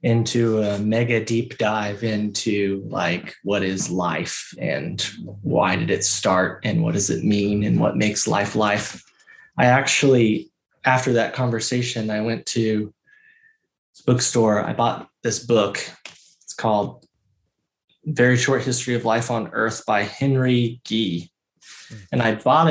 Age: 20-39